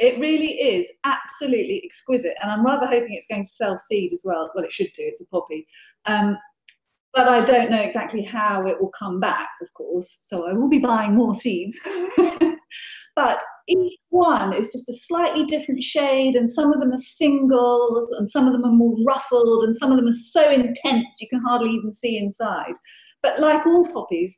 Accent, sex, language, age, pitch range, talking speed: British, female, English, 30-49, 210-290 Hz, 200 wpm